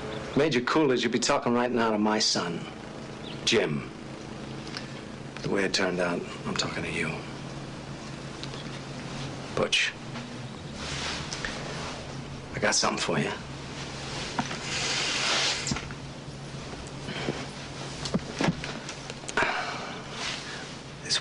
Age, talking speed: 60-79, 75 wpm